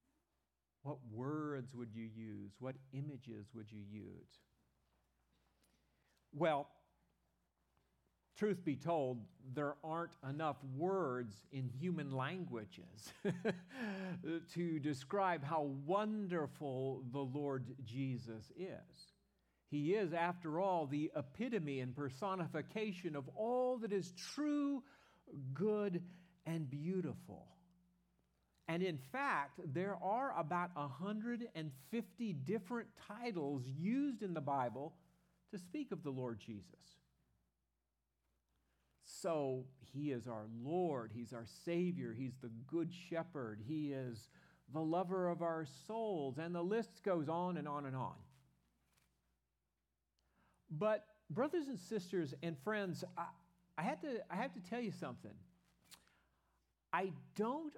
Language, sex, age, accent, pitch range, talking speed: English, male, 50-69, American, 115-180 Hz, 115 wpm